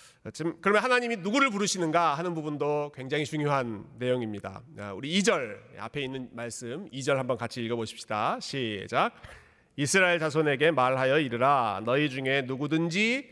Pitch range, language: 125-190 Hz, Korean